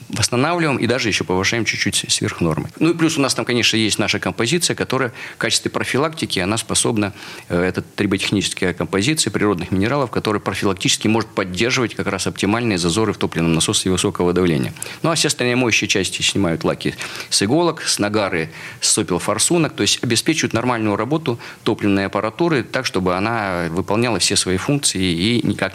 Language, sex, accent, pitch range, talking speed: Russian, male, native, 100-125 Hz, 170 wpm